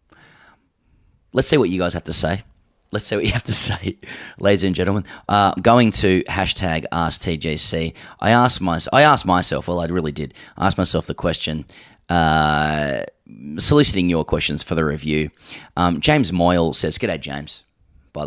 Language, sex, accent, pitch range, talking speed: English, male, Australian, 80-100 Hz, 165 wpm